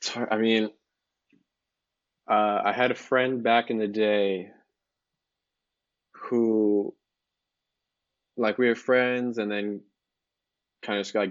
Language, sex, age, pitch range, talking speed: English, male, 20-39, 100-115 Hz, 115 wpm